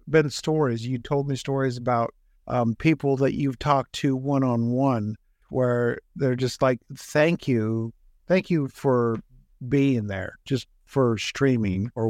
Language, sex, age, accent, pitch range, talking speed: English, male, 50-69, American, 115-150 Hz, 145 wpm